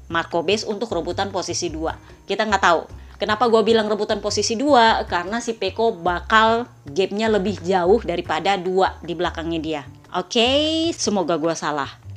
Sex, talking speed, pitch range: female, 160 wpm, 175-245 Hz